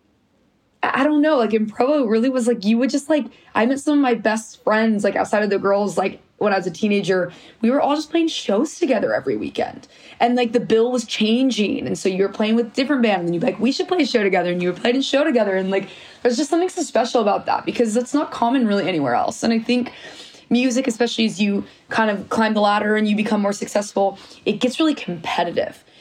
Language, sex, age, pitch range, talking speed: English, female, 20-39, 195-245 Hz, 245 wpm